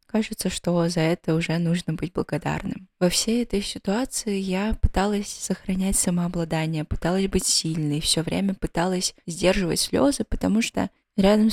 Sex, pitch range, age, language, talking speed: female, 170-195 Hz, 20-39, Russian, 140 wpm